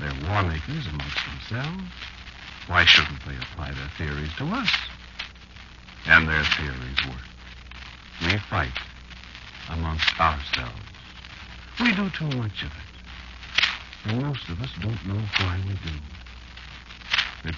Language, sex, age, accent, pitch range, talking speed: English, male, 60-79, American, 65-110 Hz, 125 wpm